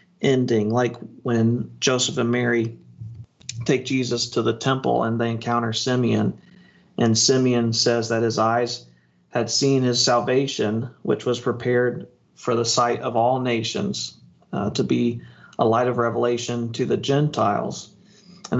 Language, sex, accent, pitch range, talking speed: English, male, American, 115-125 Hz, 145 wpm